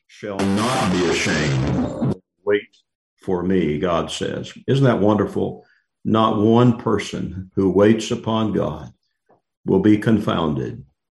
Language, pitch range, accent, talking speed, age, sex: English, 95-115 Hz, American, 120 wpm, 50-69, male